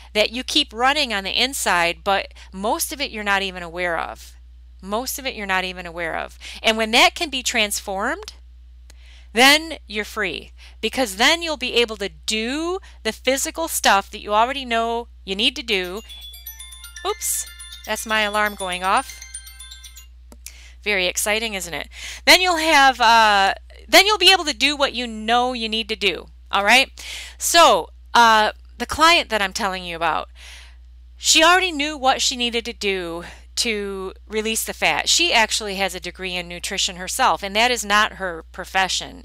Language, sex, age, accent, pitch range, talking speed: English, female, 30-49, American, 175-255 Hz, 175 wpm